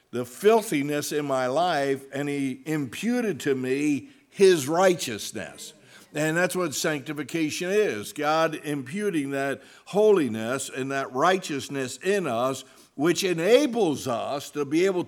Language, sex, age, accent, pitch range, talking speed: English, male, 60-79, American, 130-165 Hz, 125 wpm